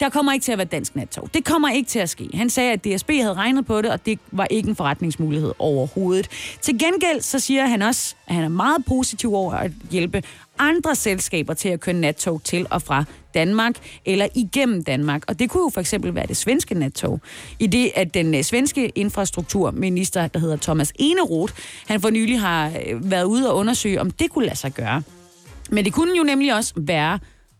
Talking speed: 210 wpm